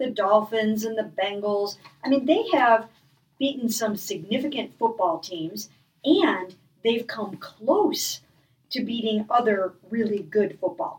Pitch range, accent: 180-245 Hz, American